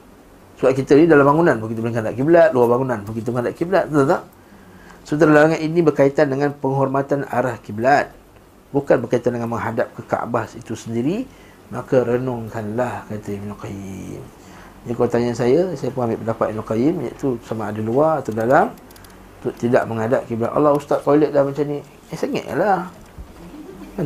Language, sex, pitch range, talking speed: Malay, male, 115-145 Hz, 155 wpm